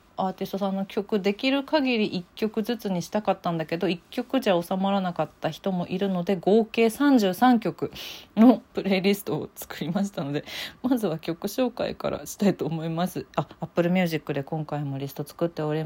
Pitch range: 160-215 Hz